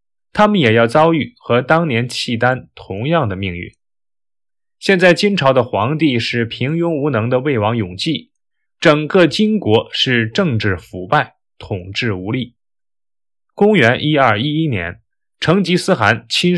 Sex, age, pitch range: male, 20-39, 115-170 Hz